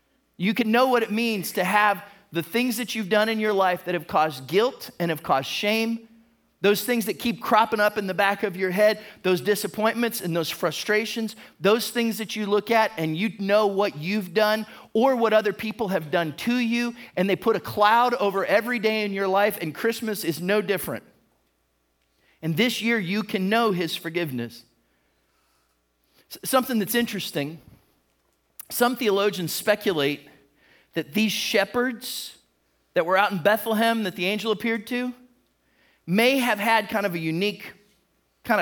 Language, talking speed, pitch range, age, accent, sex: English, 175 wpm, 160-220 Hz, 40-59, American, male